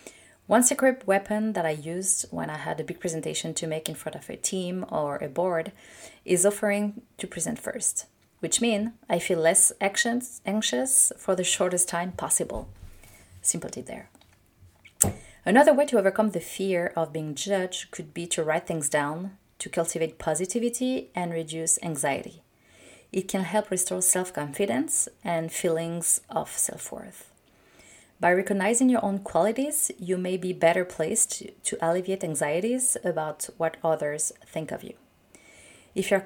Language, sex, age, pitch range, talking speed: English, female, 30-49, 165-215 Hz, 150 wpm